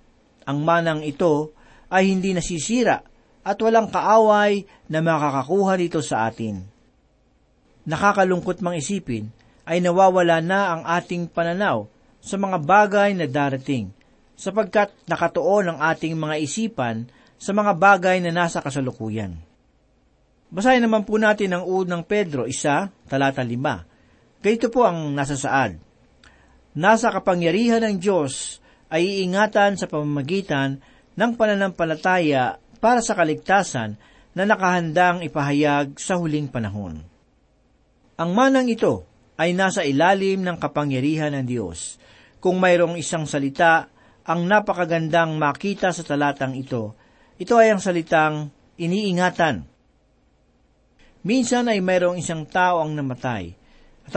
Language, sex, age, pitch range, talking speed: Filipino, male, 40-59, 140-195 Hz, 115 wpm